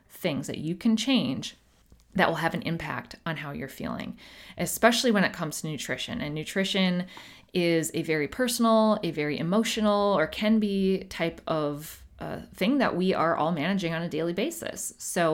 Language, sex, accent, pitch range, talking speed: English, female, American, 155-205 Hz, 180 wpm